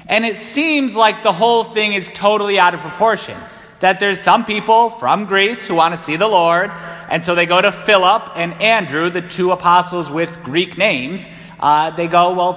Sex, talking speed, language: male, 200 wpm, English